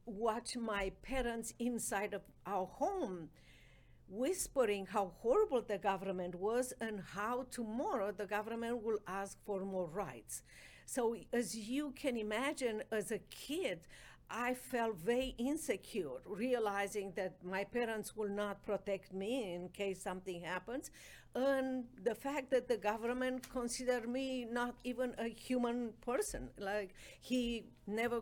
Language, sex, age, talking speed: English, female, 50-69, 135 wpm